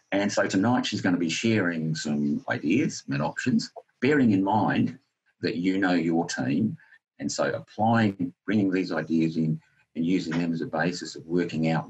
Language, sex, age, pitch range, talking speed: English, male, 50-69, 80-95 Hz, 180 wpm